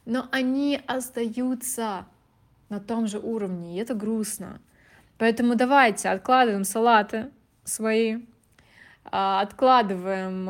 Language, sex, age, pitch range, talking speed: Russian, female, 20-39, 190-235 Hz, 90 wpm